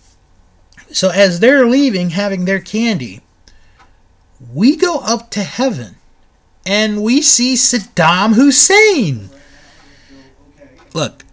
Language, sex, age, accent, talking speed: English, male, 30-49, American, 95 wpm